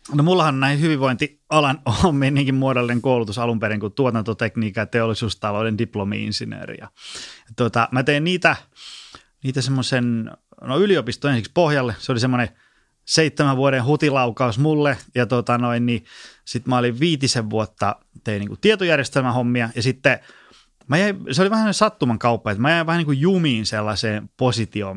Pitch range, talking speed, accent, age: 110-140 Hz, 135 wpm, native, 20-39